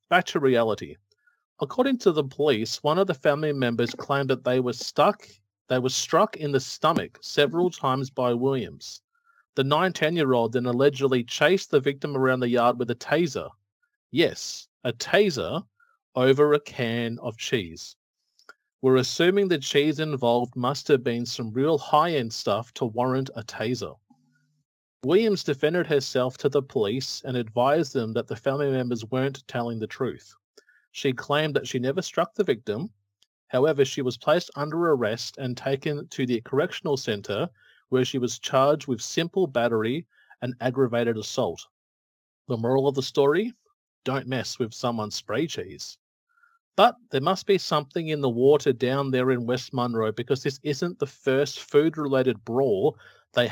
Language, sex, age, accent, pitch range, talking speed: English, male, 30-49, Australian, 120-150 Hz, 165 wpm